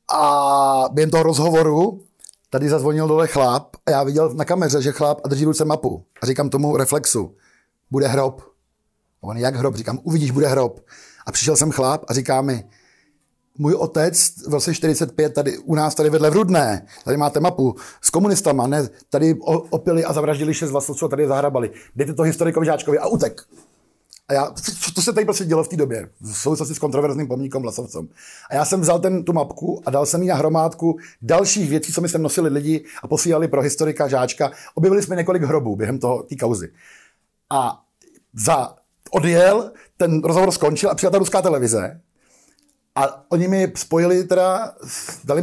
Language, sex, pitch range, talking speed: Slovak, male, 140-175 Hz, 185 wpm